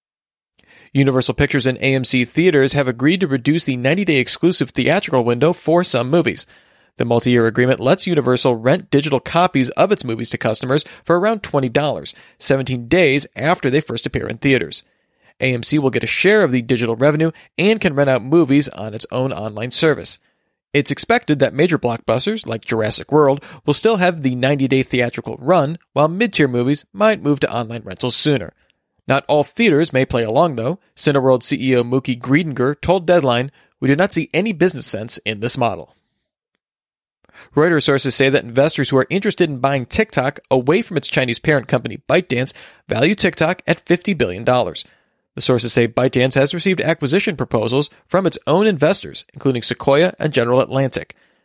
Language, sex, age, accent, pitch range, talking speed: English, male, 40-59, American, 125-160 Hz, 170 wpm